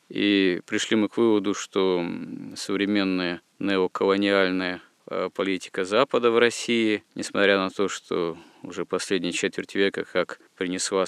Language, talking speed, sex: Russian, 120 wpm, male